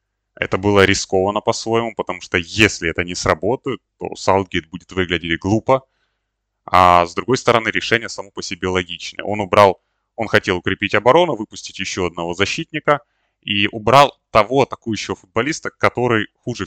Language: Russian